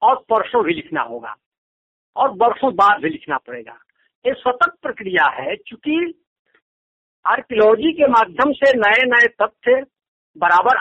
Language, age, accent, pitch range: Hindi, 60-79, native, 220-310 Hz